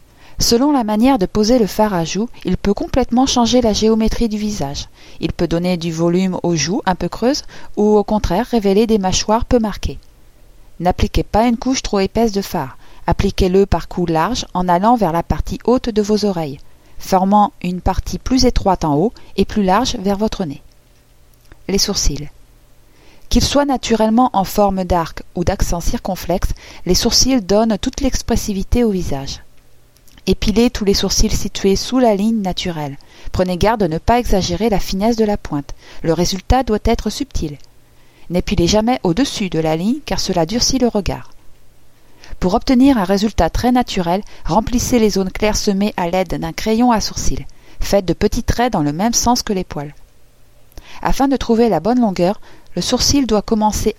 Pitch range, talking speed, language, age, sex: 180-230 Hz, 180 wpm, French, 40-59, female